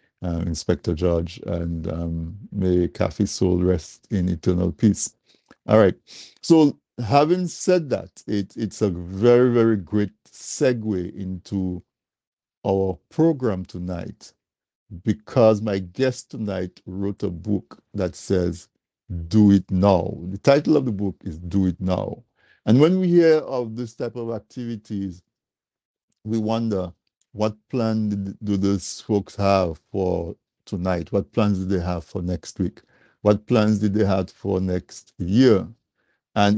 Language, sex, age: English, male, 50-69